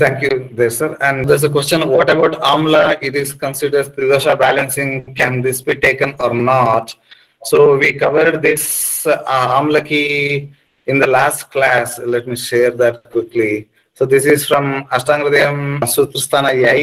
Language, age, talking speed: English, 30-49, 155 wpm